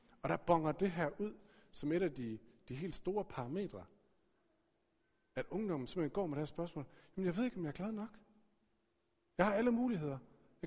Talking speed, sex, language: 200 wpm, male, Danish